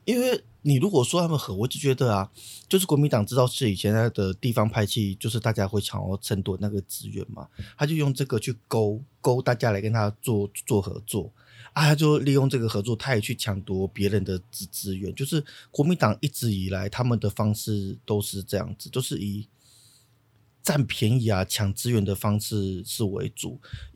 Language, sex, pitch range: Chinese, male, 105-130 Hz